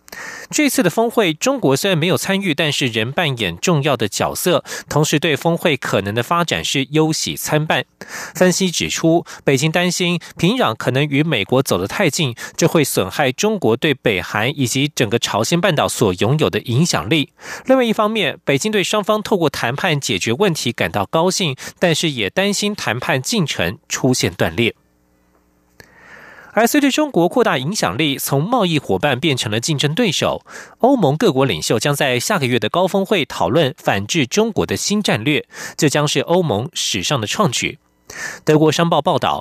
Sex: male